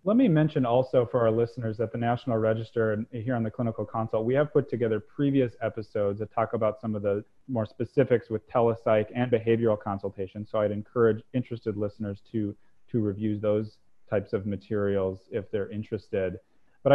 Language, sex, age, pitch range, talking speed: English, male, 30-49, 100-115 Hz, 185 wpm